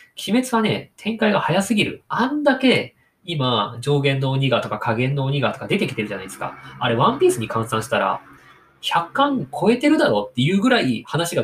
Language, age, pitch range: Japanese, 20-39, 115-165 Hz